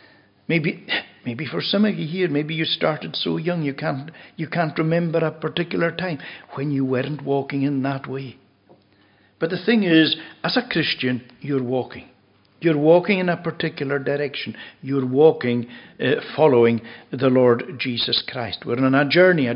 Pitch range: 125-175 Hz